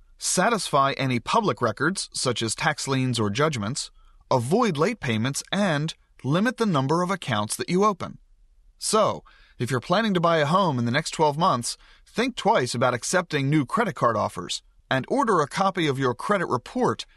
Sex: male